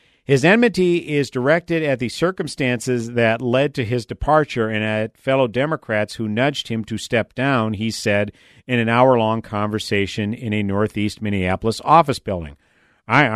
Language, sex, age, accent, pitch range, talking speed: English, male, 50-69, American, 105-135 Hz, 155 wpm